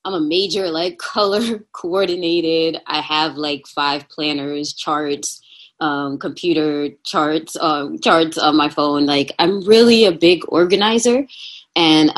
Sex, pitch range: female, 150-215 Hz